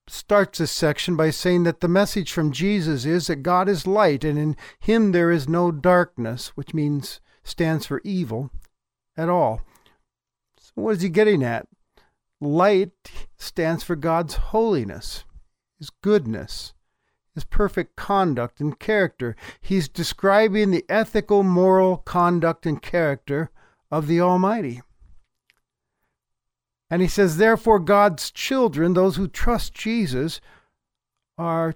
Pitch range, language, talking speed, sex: 150-195 Hz, English, 130 wpm, male